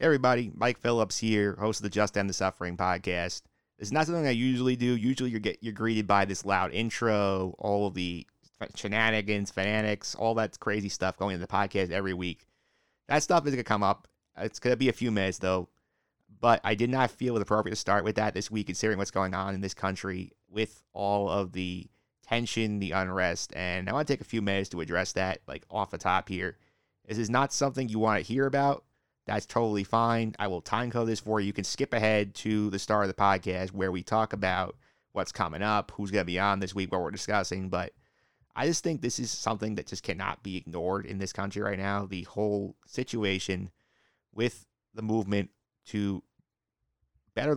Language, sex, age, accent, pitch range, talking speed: English, male, 30-49, American, 95-110 Hz, 215 wpm